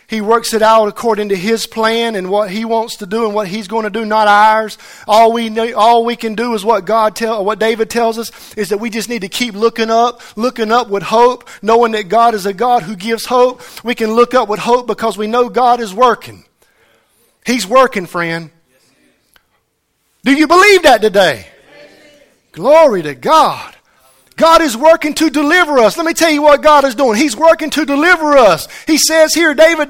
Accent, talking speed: American, 205 wpm